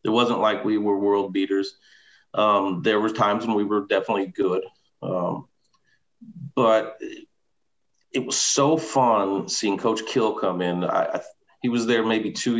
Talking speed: 150 wpm